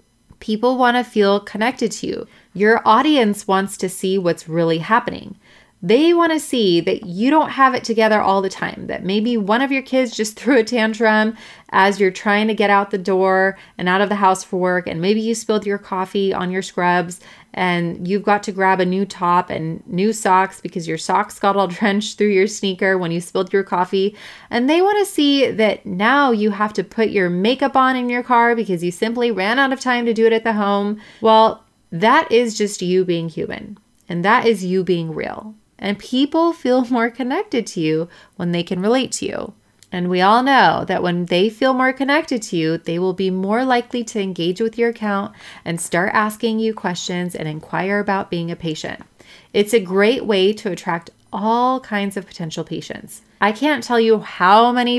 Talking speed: 210 wpm